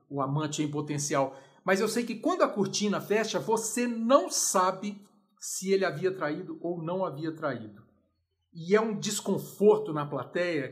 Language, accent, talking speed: Portuguese, Brazilian, 160 wpm